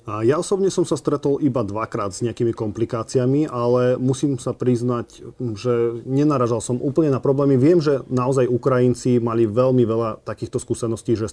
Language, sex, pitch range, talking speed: Slovak, male, 115-125 Hz, 160 wpm